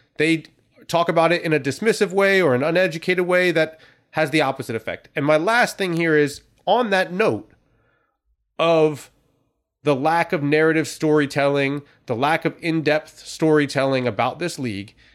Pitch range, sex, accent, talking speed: 130-170 Hz, male, American, 160 wpm